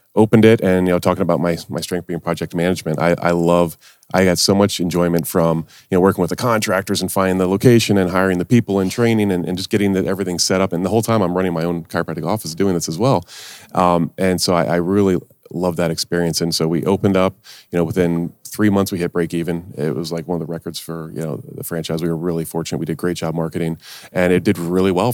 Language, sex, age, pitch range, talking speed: English, male, 30-49, 85-95 Hz, 260 wpm